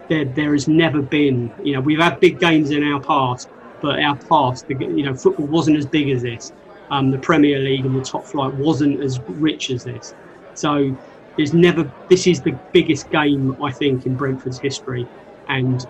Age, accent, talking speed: 30-49, British, 195 wpm